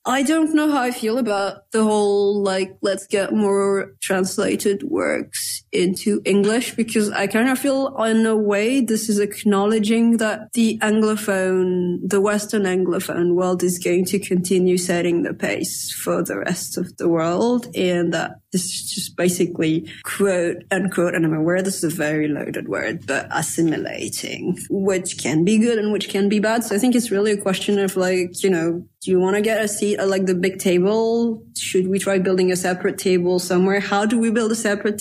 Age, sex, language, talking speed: 30-49, female, Finnish, 195 wpm